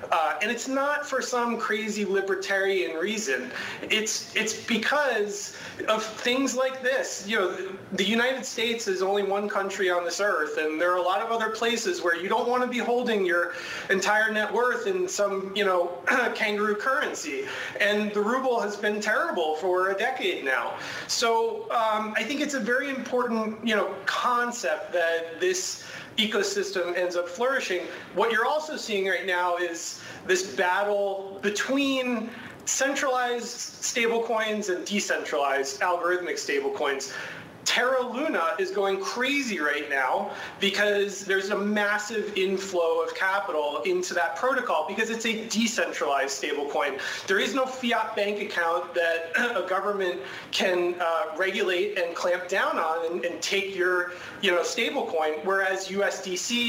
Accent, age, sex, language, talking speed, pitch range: American, 30-49, male, English, 155 wpm, 180-230 Hz